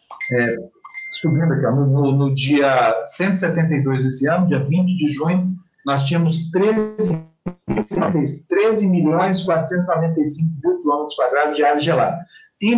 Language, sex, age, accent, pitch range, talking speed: Portuguese, male, 50-69, Brazilian, 145-180 Hz, 120 wpm